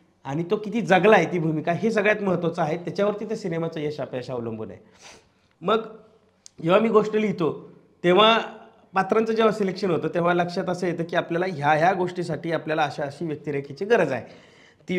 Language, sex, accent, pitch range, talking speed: Marathi, male, native, 155-195 Hz, 180 wpm